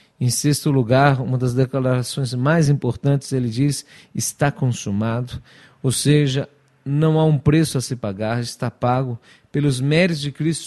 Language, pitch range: Portuguese, 125-150 Hz